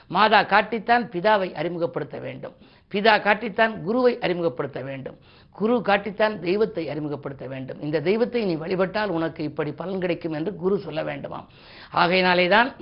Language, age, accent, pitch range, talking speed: Tamil, 50-69, native, 160-200 Hz, 130 wpm